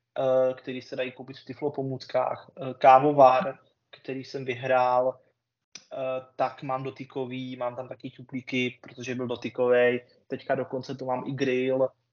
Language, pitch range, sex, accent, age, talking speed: Czech, 125-135 Hz, male, native, 20-39, 130 wpm